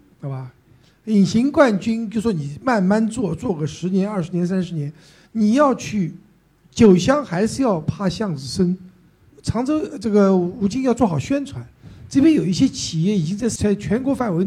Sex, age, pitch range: male, 50-69, 145-200 Hz